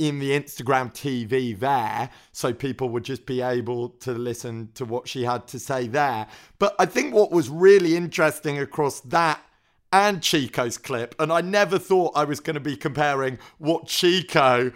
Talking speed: 180 wpm